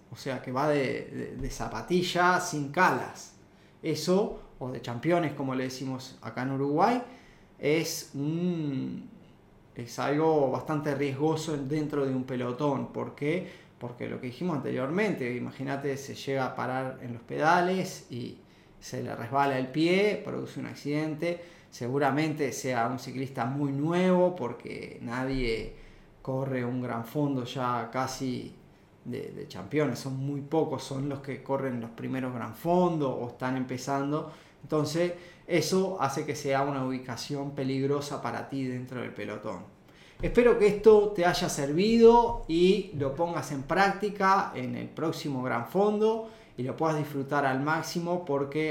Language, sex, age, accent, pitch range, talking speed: Spanish, male, 20-39, Argentinian, 130-175 Hz, 145 wpm